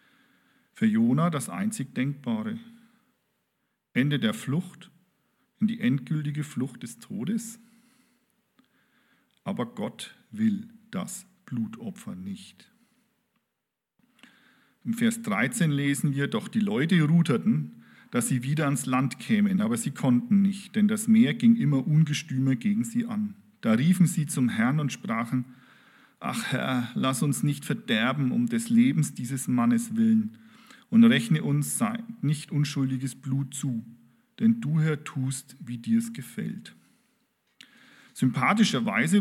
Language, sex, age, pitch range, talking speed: German, male, 40-59, 150-230 Hz, 130 wpm